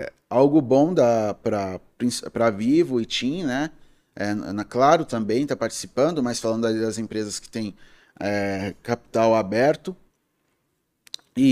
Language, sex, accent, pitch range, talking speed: Portuguese, male, Brazilian, 115-155 Hz, 135 wpm